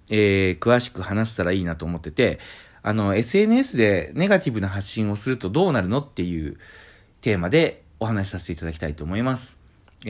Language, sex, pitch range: Japanese, male, 90-120 Hz